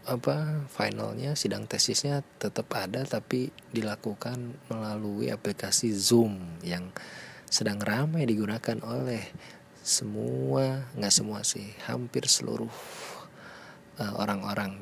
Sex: male